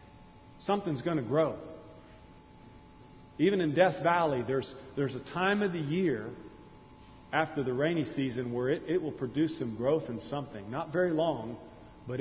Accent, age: American, 40-59